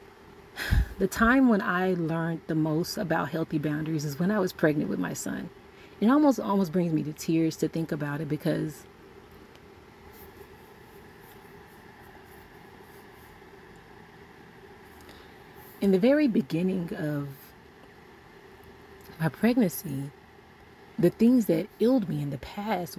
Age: 30-49